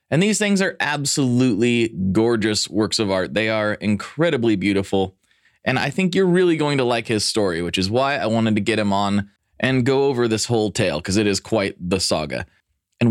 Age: 20-39